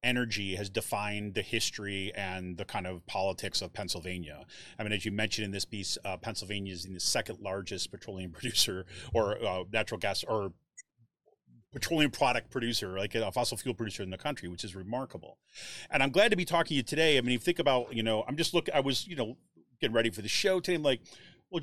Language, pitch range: English, 110-150 Hz